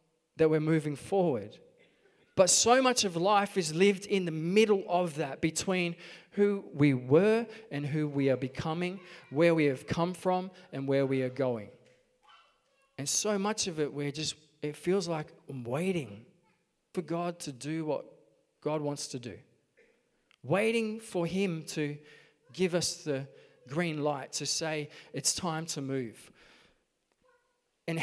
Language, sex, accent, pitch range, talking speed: English, male, Australian, 150-195 Hz, 155 wpm